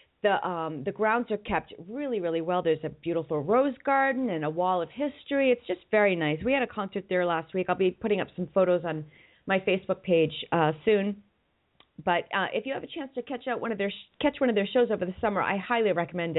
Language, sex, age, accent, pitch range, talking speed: English, female, 40-59, American, 175-240 Hz, 245 wpm